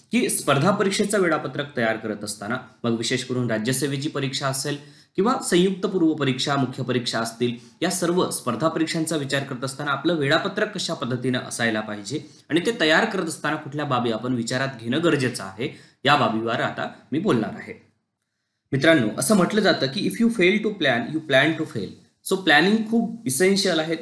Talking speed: 175 wpm